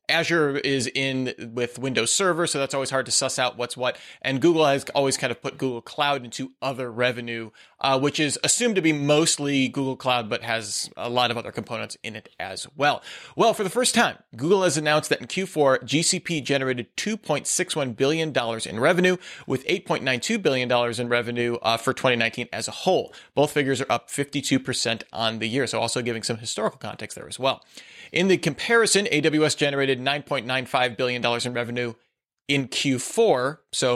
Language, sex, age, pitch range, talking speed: English, male, 30-49, 120-155 Hz, 185 wpm